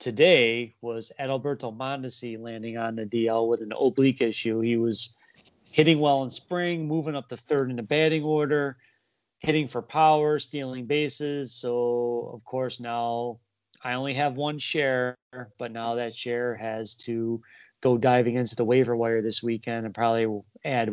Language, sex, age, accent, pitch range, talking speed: English, male, 30-49, American, 115-130 Hz, 165 wpm